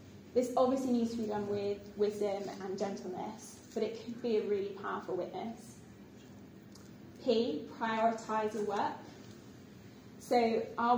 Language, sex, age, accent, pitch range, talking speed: English, female, 10-29, British, 205-235 Hz, 130 wpm